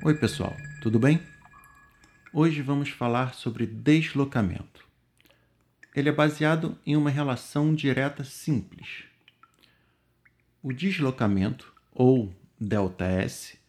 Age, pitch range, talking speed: 50-69, 105-150 Hz, 90 wpm